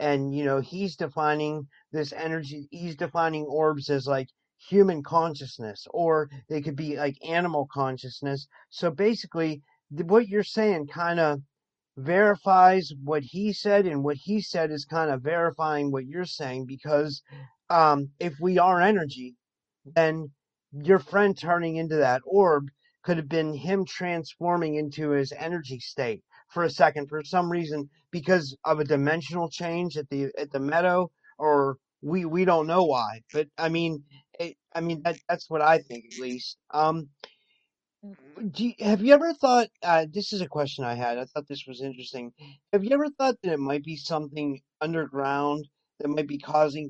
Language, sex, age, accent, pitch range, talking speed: English, male, 40-59, American, 140-170 Hz, 170 wpm